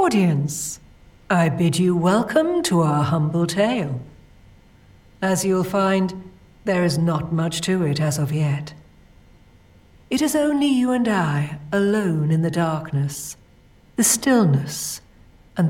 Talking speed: 130 wpm